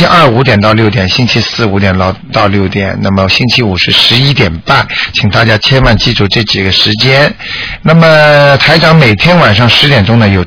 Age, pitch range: 50-69, 100-125 Hz